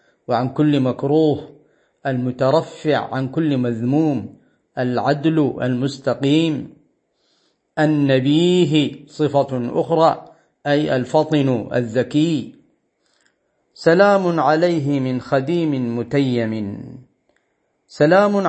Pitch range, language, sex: 130-160 Hz, Arabic, male